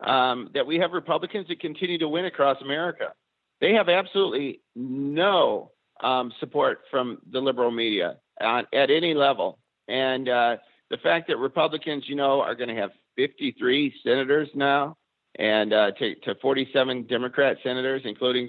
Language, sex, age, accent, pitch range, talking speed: English, male, 50-69, American, 125-180 Hz, 155 wpm